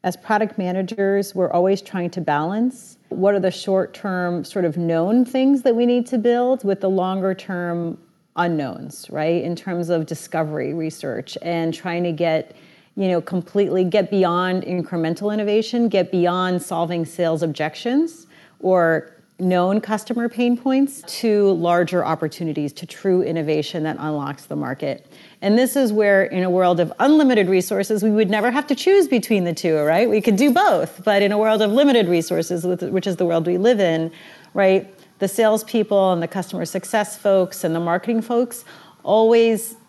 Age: 40-59